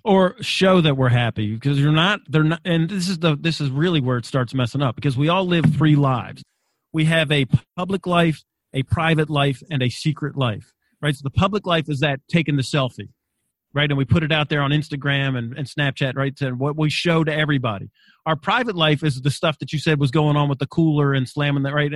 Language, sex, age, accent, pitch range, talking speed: English, male, 40-59, American, 140-170 Hz, 240 wpm